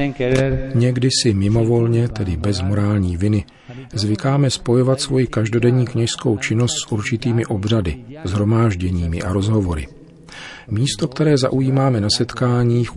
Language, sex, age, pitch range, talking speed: Czech, male, 40-59, 95-115 Hz, 110 wpm